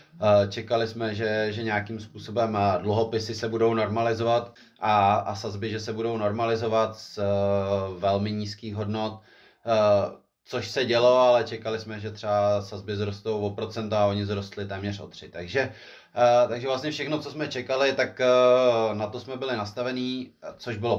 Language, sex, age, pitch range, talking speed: Czech, male, 30-49, 100-110 Hz, 155 wpm